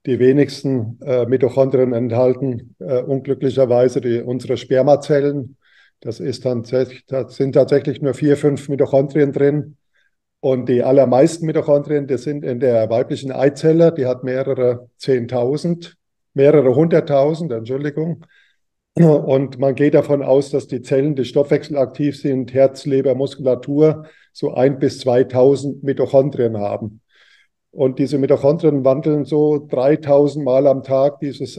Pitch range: 125-145 Hz